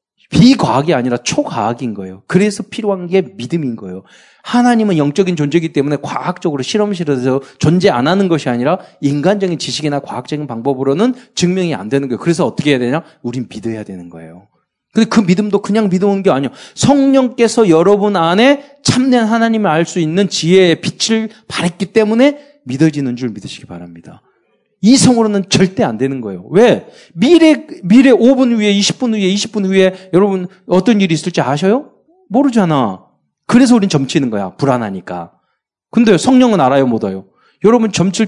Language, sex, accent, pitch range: Korean, male, native, 135-215 Hz